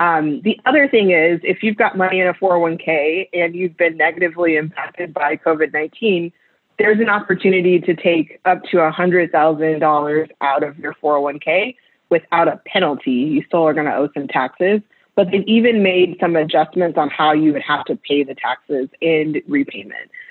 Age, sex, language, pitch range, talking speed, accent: 20-39, female, English, 155-185 Hz, 175 wpm, American